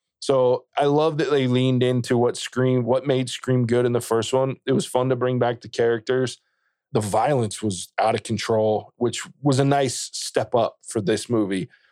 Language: English